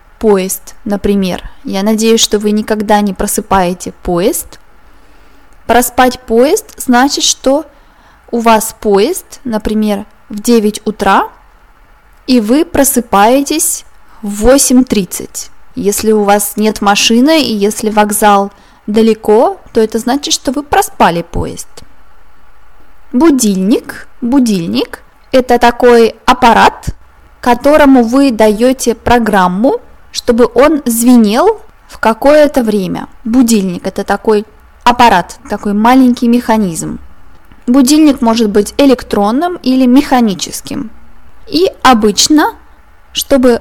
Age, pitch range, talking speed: 20-39, 215-270 Hz, 100 wpm